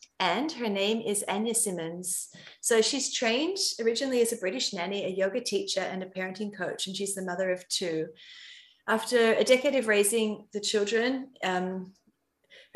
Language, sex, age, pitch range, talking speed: English, female, 30-49, 185-230 Hz, 165 wpm